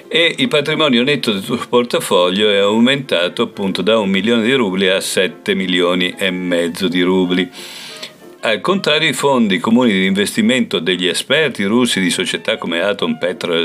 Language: Italian